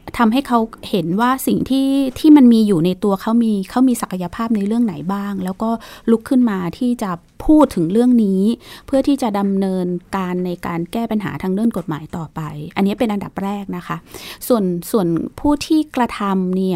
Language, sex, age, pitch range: Thai, female, 20-39, 190-240 Hz